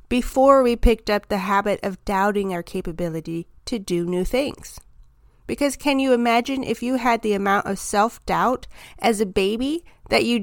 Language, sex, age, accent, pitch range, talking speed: English, female, 30-49, American, 200-260 Hz, 175 wpm